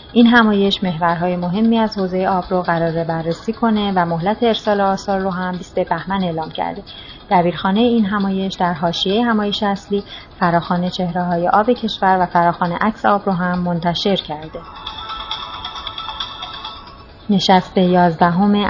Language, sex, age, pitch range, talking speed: Persian, female, 30-49, 170-200 Hz, 140 wpm